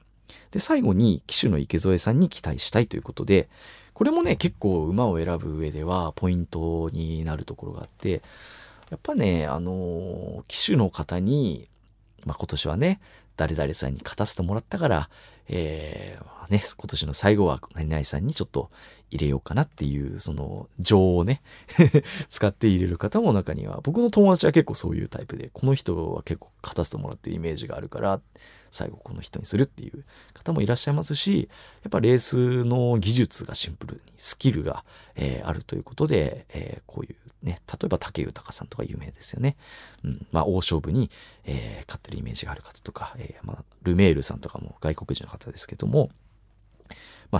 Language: Japanese